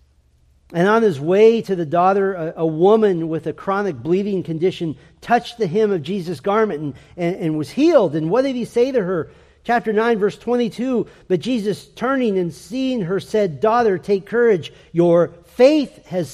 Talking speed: 180 wpm